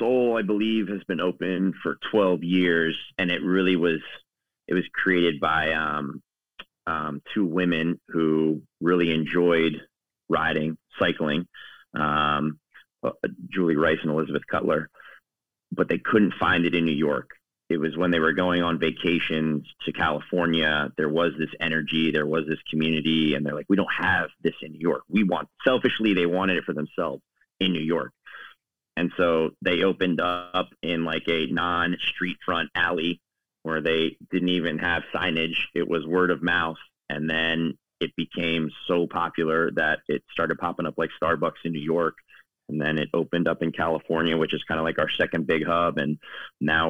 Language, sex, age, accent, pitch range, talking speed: English, male, 30-49, American, 80-90 Hz, 175 wpm